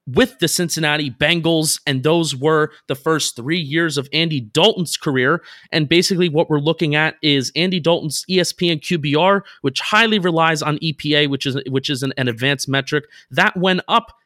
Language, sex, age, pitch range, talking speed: English, male, 30-49, 140-175 Hz, 175 wpm